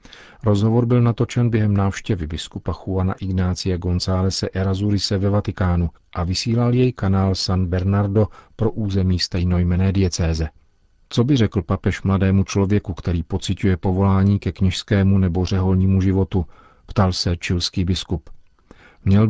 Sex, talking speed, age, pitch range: male, 130 wpm, 40-59, 90-105 Hz